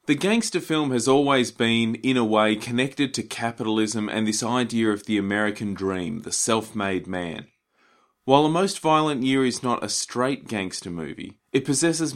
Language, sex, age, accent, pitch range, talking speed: English, male, 30-49, Australian, 105-130 Hz, 175 wpm